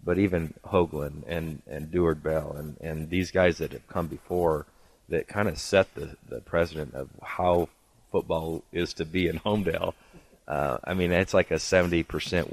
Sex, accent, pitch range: male, American, 80-95 Hz